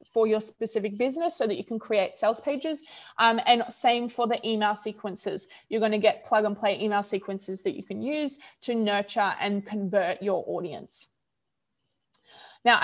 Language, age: English, 20-39